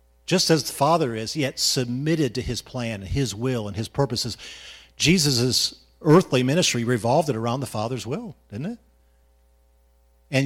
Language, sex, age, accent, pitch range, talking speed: English, male, 50-69, American, 100-140 Hz, 160 wpm